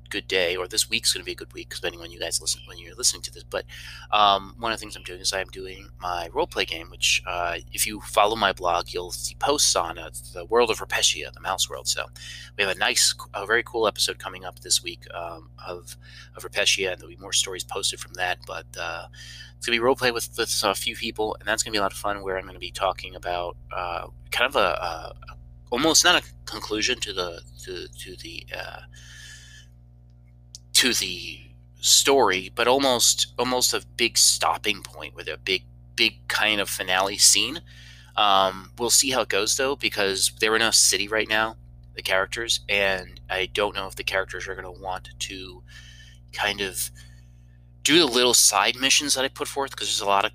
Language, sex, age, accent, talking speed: English, male, 30-49, American, 220 wpm